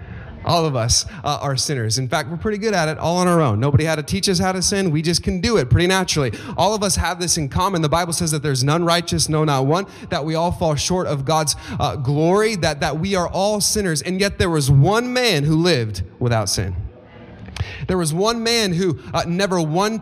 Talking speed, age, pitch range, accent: 245 wpm, 30-49, 120-170 Hz, American